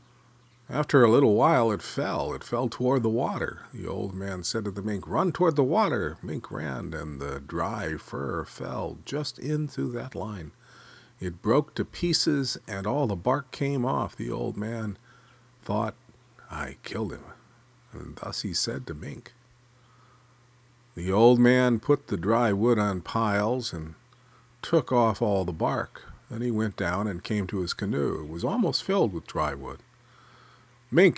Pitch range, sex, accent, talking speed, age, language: 95-125 Hz, male, American, 170 wpm, 50-69, English